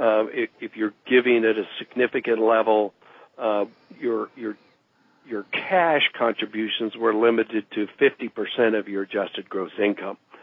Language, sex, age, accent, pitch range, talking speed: English, male, 60-79, American, 110-135 Hz, 145 wpm